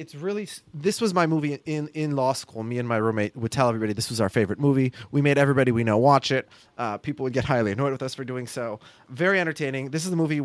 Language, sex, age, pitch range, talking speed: English, male, 30-49, 120-150 Hz, 265 wpm